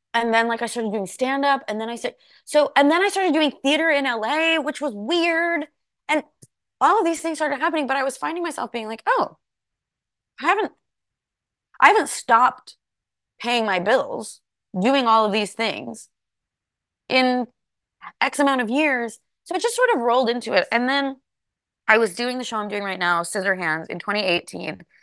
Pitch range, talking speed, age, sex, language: 165-250 Hz, 190 wpm, 20-39, female, English